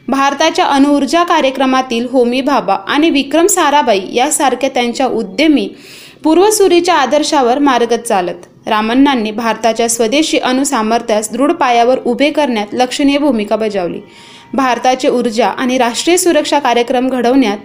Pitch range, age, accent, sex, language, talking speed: 240-290 Hz, 20-39, native, female, Marathi, 110 wpm